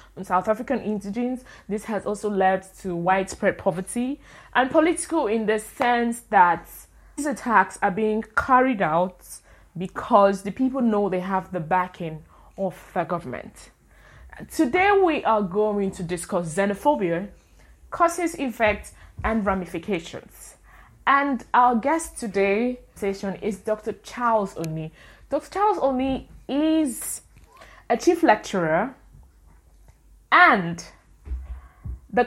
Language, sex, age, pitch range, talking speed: English, female, 20-39, 190-255 Hz, 115 wpm